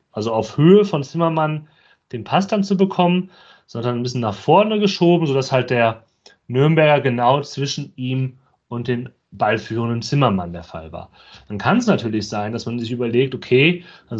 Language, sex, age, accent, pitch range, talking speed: German, male, 30-49, German, 115-155 Hz, 175 wpm